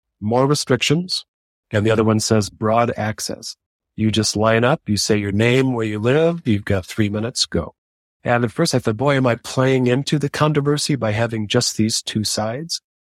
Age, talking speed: 40-59, 195 wpm